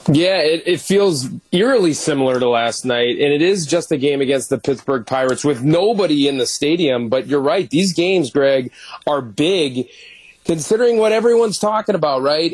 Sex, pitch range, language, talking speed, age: male, 130-170 Hz, English, 180 wpm, 30-49